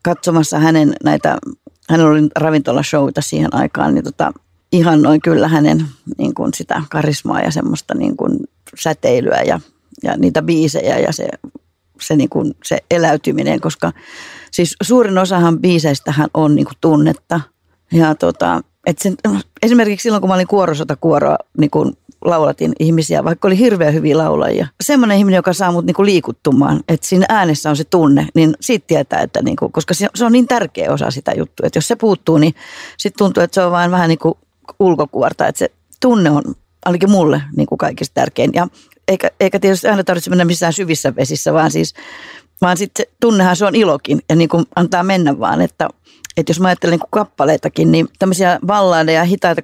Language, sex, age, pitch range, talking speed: Finnish, female, 40-59, 155-195 Hz, 170 wpm